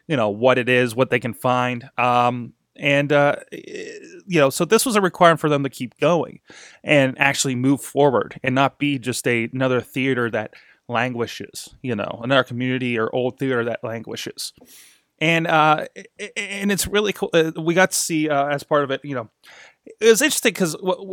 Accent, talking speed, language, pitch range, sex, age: American, 185 wpm, English, 120-150 Hz, male, 20-39